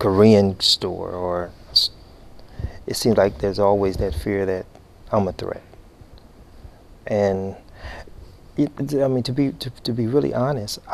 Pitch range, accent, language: 95-115 Hz, American, Finnish